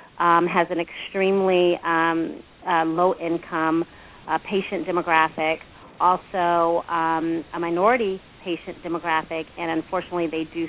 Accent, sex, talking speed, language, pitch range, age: American, female, 120 wpm, English, 165-185 Hz, 30-49